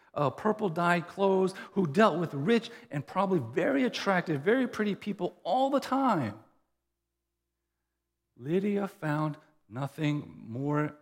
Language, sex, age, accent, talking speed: English, male, 40-59, American, 115 wpm